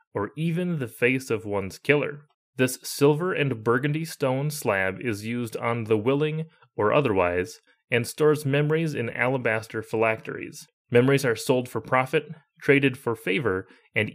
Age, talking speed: 30-49, 150 wpm